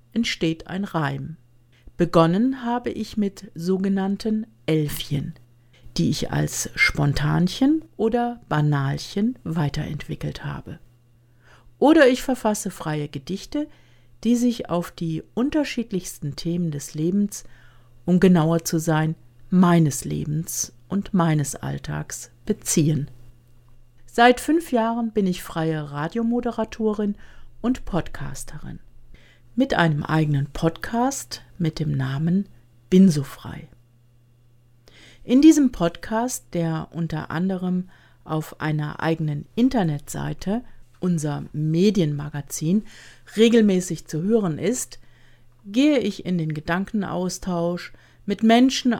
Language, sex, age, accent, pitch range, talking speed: English, female, 50-69, German, 145-210 Hz, 100 wpm